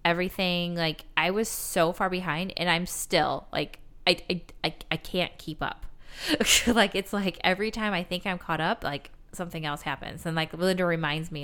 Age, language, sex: 20-39, English, female